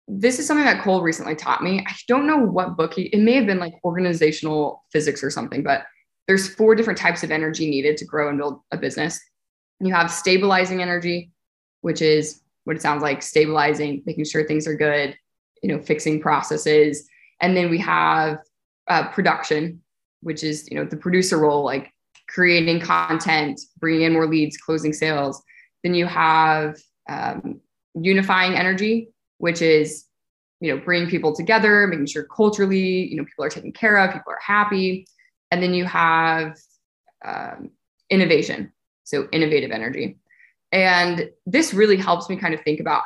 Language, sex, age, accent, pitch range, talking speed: English, female, 20-39, American, 155-190 Hz, 170 wpm